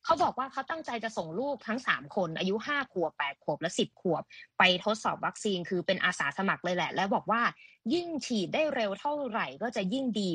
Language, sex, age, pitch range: Thai, female, 20-39, 180-240 Hz